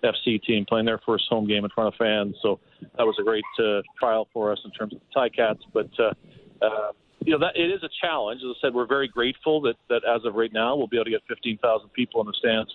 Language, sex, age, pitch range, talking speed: English, male, 40-59, 110-125 Hz, 270 wpm